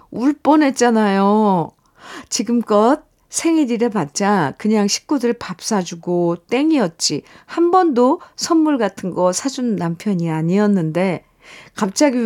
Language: Korean